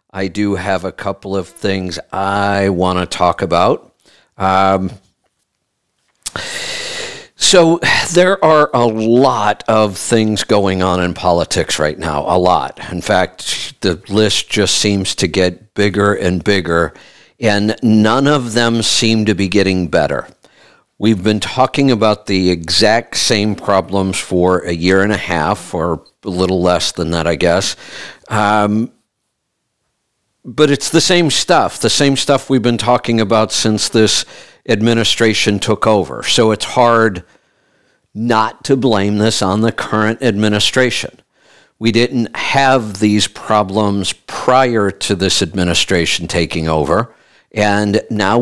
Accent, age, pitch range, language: American, 50-69, 95-115 Hz, English